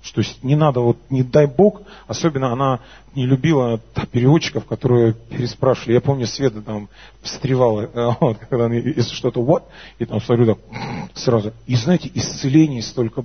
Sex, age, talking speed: male, 30-49, 150 wpm